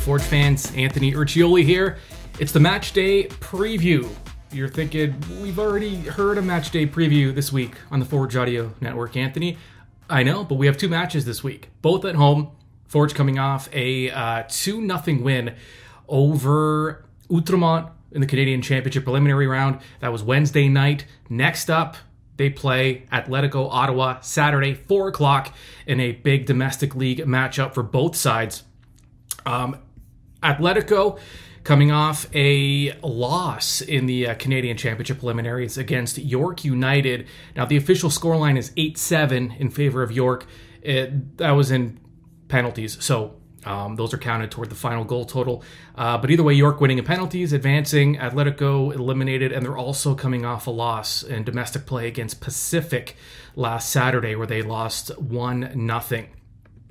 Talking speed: 155 wpm